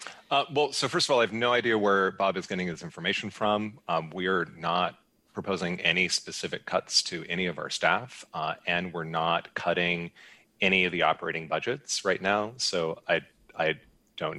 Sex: male